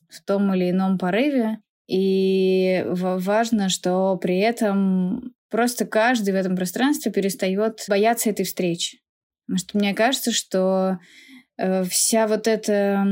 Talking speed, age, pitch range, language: 125 wpm, 20-39, 195-235 Hz, Russian